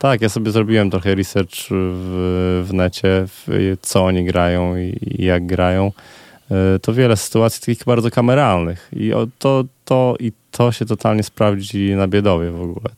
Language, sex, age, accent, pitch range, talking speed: Polish, male, 20-39, native, 95-110 Hz, 150 wpm